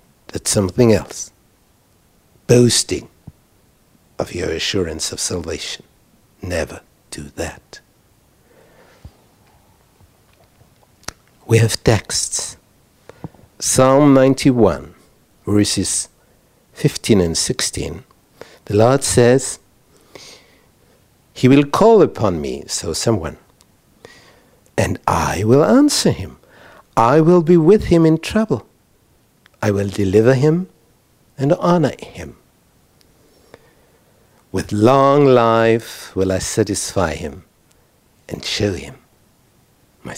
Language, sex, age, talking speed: English, male, 60-79, 90 wpm